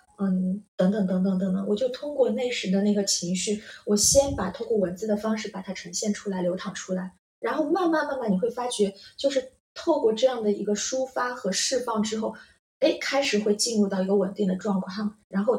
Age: 20-39